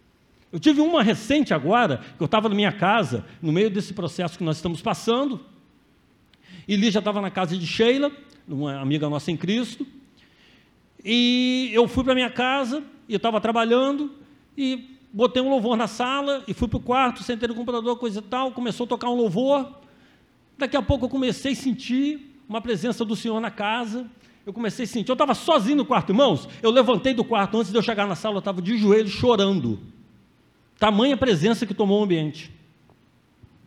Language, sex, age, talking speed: Portuguese, male, 50-69, 195 wpm